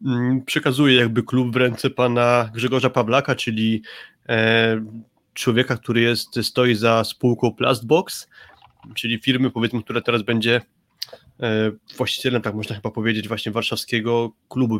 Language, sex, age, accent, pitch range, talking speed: Polish, male, 20-39, native, 115-130 Hz, 120 wpm